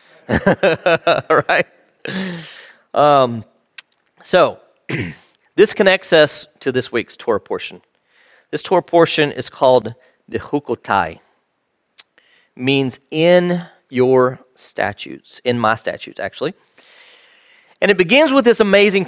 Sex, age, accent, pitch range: male, 40-59, American, 125-190 Hz